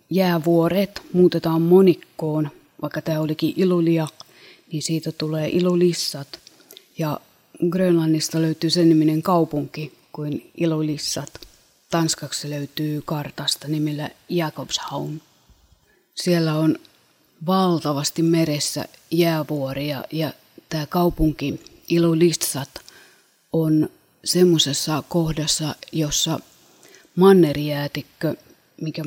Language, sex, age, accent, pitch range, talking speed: Finnish, female, 30-49, native, 150-170 Hz, 80 wpm